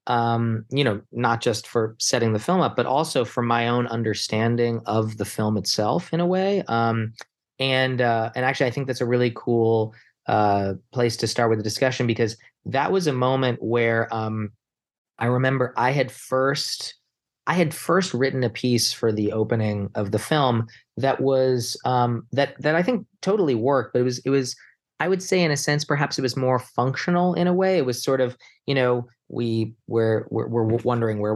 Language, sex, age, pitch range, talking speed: English, male, 20-39, 110-135 Hz, 200 wpm